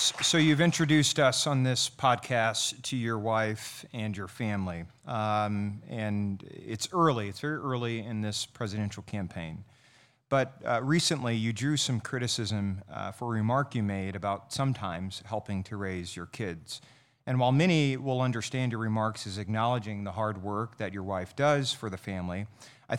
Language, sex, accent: English, male, American